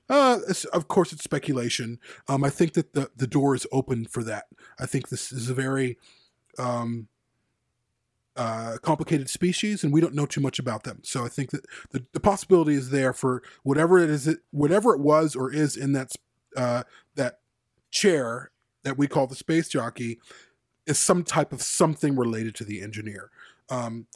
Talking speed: 180 wpm